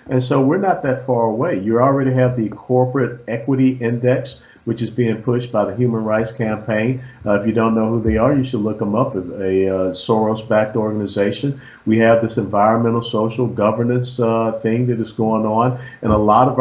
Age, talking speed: 50-69, 210 wpm